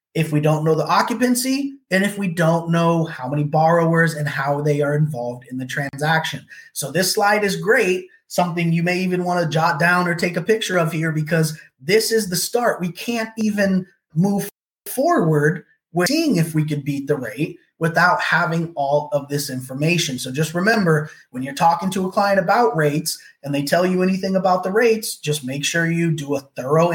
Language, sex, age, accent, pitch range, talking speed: English, male, 20-39, American, 140-185 Hz, 200 wpm